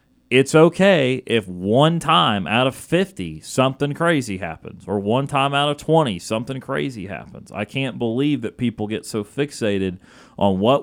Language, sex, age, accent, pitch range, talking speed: English, male, 30-49, American, 105-145 Hz, 165 wpm